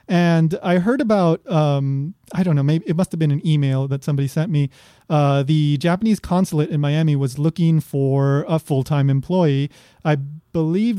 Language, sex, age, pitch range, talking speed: English, male, 30-49, 145-180 Hz, 180 wpm